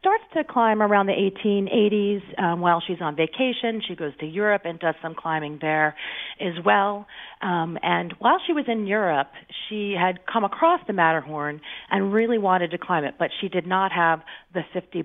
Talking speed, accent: 190 wpm, American